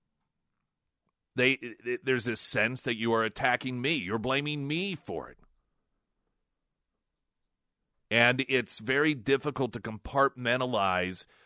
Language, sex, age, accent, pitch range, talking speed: English, male, 40-59, American, 115-145 Hz, 105 wpm